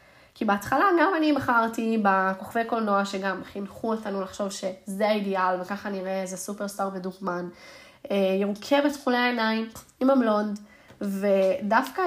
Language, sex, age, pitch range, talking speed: Hebrew, female, 20-39, 185-230 Hz, 120 wpm